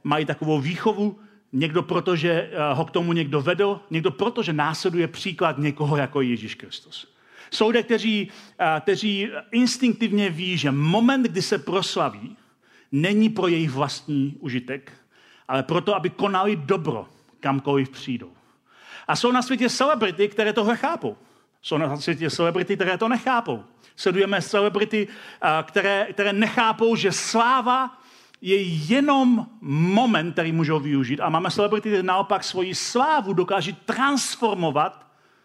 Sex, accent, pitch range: male, native, 140-190 Hz